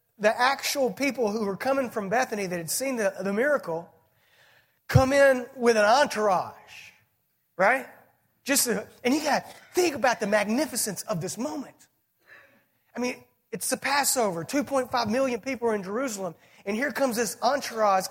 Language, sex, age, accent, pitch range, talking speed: English, male, 30-49, American, 160-270 Hz, 160 wpm